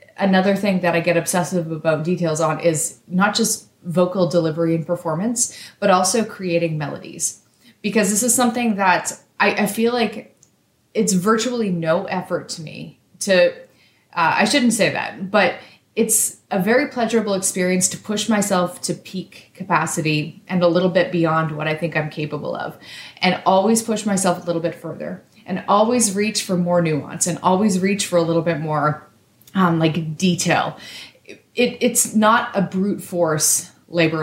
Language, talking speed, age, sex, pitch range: English, 170 wpm, 30-49, female, 165-205 Hz